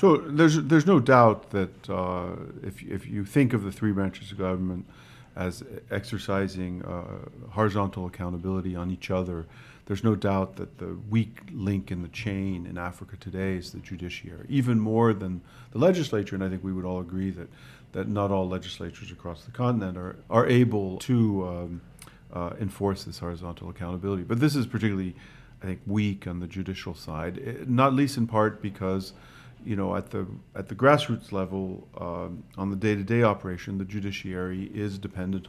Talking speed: 175 wpm